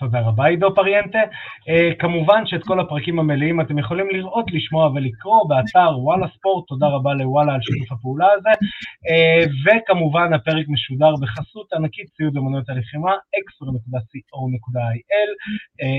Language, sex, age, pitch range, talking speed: Hebrew, male, 30-49, 130-175 Hz, 130 wpm